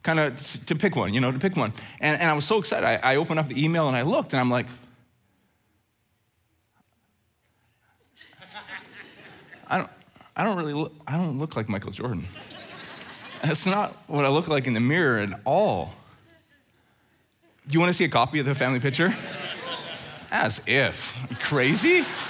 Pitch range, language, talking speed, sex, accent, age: 120-165 Hz, English, 170 wpm, male, American, 20-39